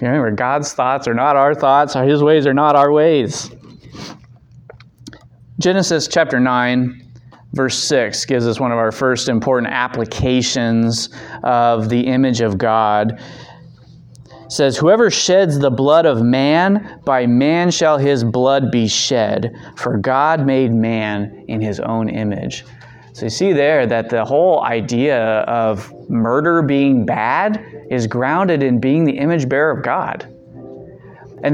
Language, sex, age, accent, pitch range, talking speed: English, male, 30-49, American, 120-165 Hz, 145 wpm